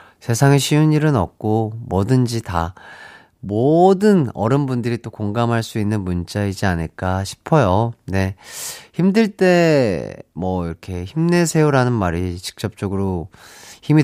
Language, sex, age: Korean, male, 40-59